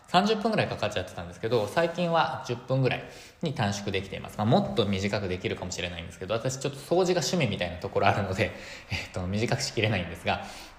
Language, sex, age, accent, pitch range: Japanese, male, 20-39, native, 100-155 Hz